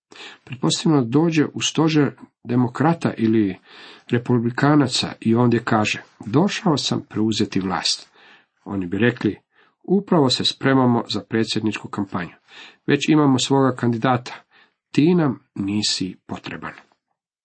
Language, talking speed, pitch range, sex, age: Croatian, 105 wpm, 110-140 Hz, male, 50-69